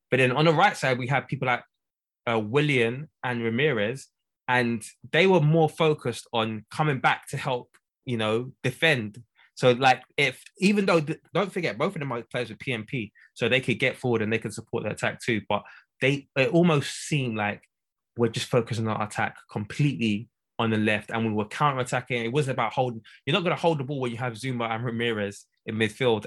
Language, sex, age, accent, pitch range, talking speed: English, male, 20-39, British, 115-140 Hz, 215 wpm